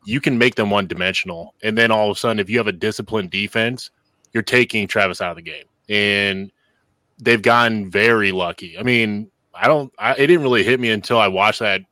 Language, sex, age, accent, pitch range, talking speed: English, male, 20-39, American, 105-120 Hz, 220 wpm